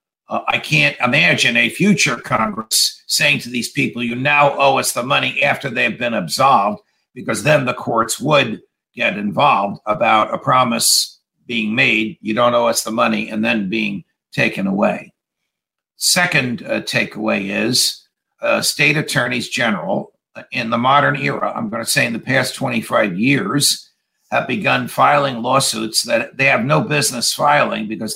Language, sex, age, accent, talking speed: English, male, 50-69, American, 165 wpm